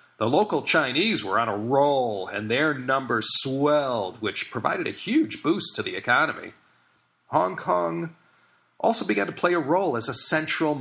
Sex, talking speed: male, 165 wpm